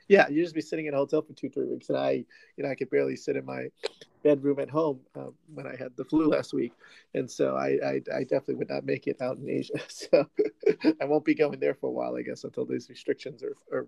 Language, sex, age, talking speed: English, male, 30-49, 270 wpm